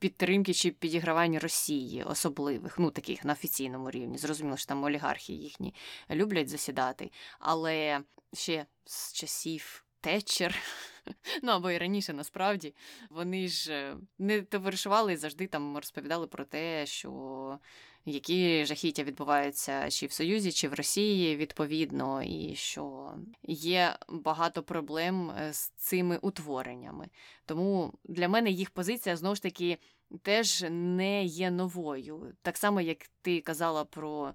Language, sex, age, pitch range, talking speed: Ukrainian, female, 20-39, 150-180 Hz, 130 wpm